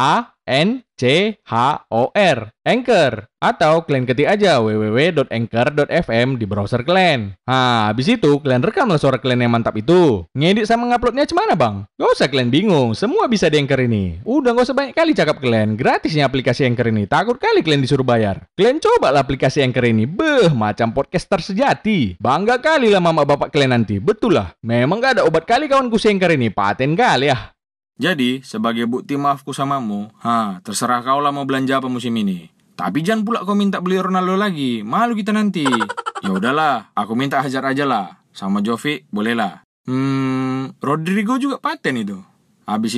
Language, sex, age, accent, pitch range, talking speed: Indonesian, male, 20-39, native, 120-205 Hz, 165 wpm